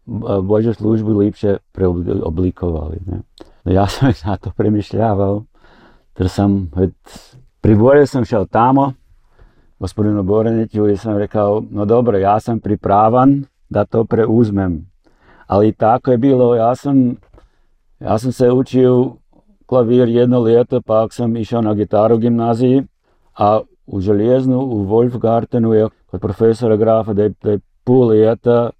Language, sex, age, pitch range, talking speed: Croatian, male, 50-69, 105-125 Hz, 125 wpm